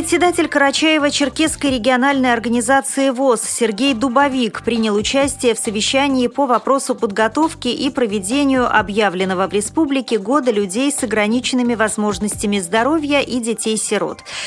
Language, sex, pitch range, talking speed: Russian, female, 210-270 Hz, 115 wpm